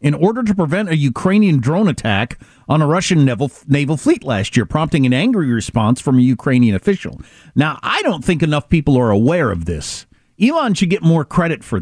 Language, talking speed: English, 200 wpm